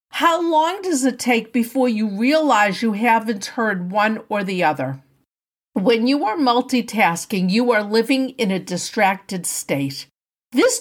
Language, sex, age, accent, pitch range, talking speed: English, female, 50-69, American, 215-275 Hz, 150 wpm